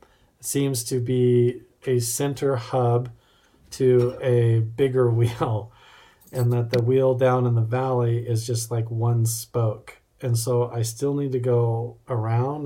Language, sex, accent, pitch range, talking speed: English, male, American, 115-125 Hz, 145 wpm